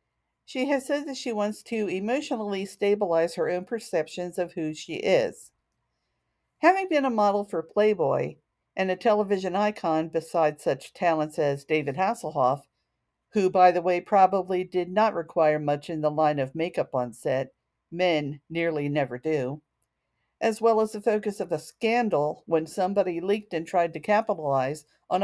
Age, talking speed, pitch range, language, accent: 50-69, 160 wpm, 160-220 Hz, English, American